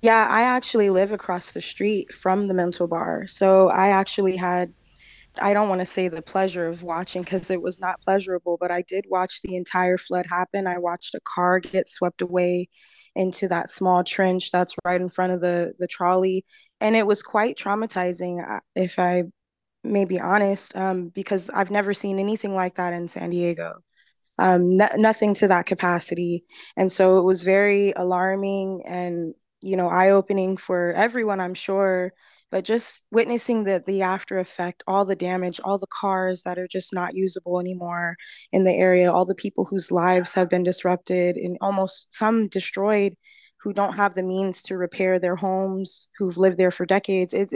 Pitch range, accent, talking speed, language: 180-200 Hz, American, 185 wpm, English